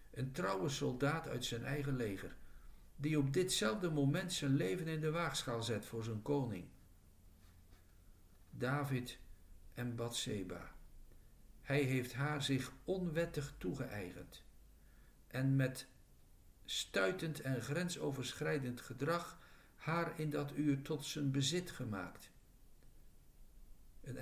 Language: Dutch